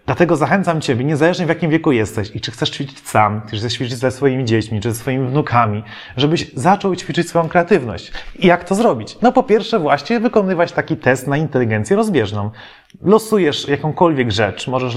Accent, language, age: native, Polish, 30-49